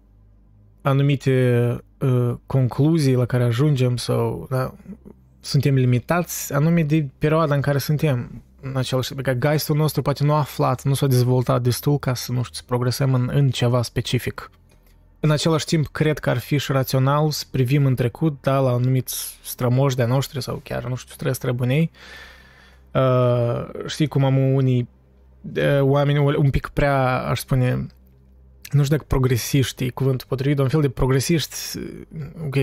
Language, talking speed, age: Romanian, 160 wpm, 20-39